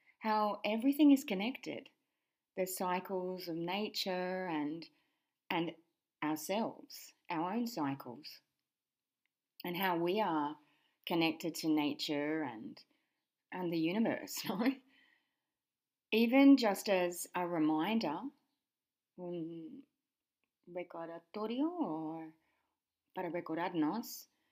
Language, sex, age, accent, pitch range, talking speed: English, female, 30-49, Australian, 170-275 Hz, 80 wpm